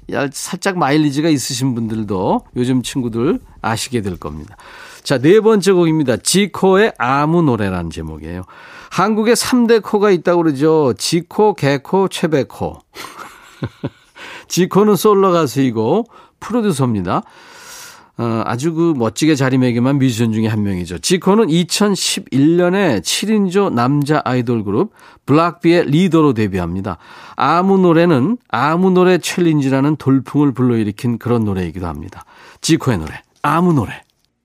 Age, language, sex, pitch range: 40-59, Korean, male, 115-180 Hz